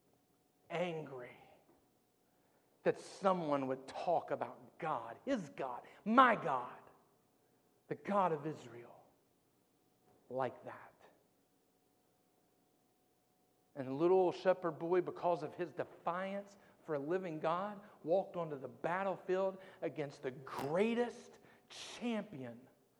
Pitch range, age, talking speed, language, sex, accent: 135-175 Hz, 50-69, 95 wpm, English, male, American